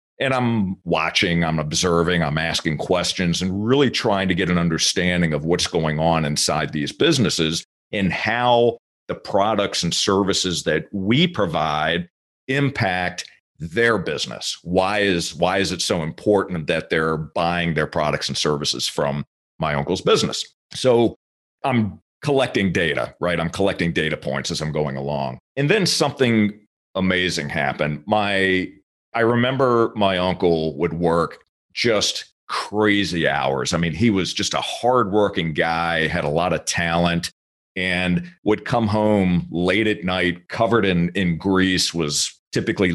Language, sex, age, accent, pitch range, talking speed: English, male, 40-59, American, 85-105 Hz, 150 wpm